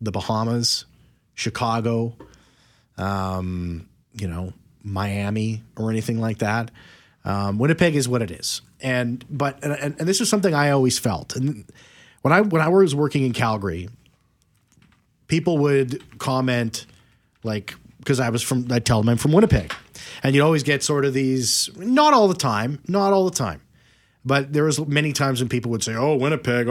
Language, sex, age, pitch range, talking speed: English, male, 30-49, 115-145 Hz, 170 wpm